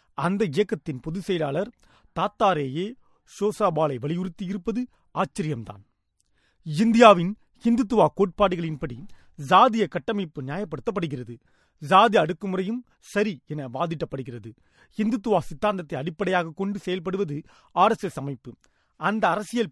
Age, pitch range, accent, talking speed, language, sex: 30-49, 160-205 Hz, native, 85 wpm, Tamil, male